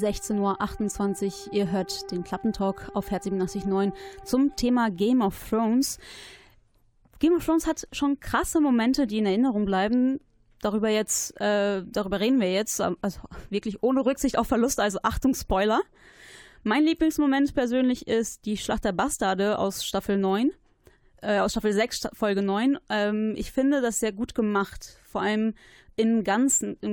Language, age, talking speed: German, 20-39, 155 wpm